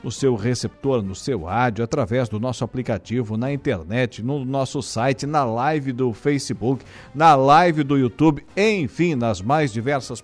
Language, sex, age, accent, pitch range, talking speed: Portuguese, male, 50-69, Brazilian, 125-155 Hz, 160 wpm